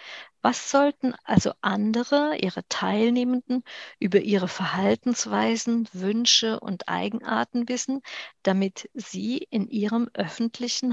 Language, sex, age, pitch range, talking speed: German, female, 50-69, 185-240 Hz, 100 wpm